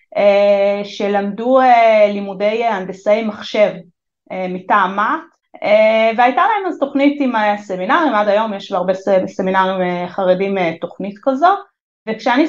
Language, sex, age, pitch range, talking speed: Hebrew, female, 30-49, 195-285 Hz, 95 wpm